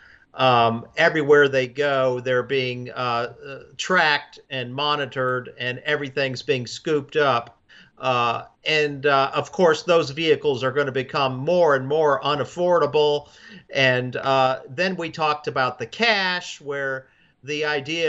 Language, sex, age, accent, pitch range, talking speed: English, male, 50-69, American, 140-175 Hz, 140 wpm